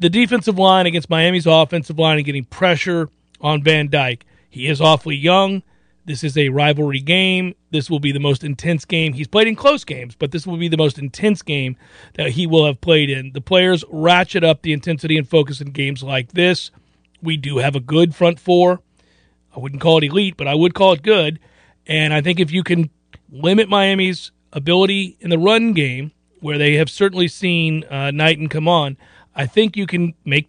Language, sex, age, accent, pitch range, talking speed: English, male, 40-59, American, 150-195 Hz, 205 wpm